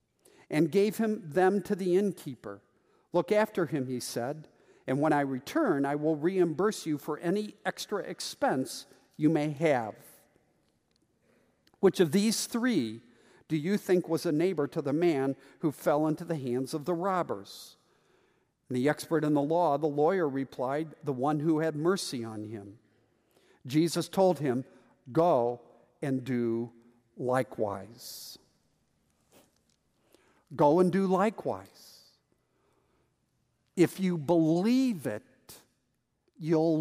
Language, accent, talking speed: English, American, 130 wpm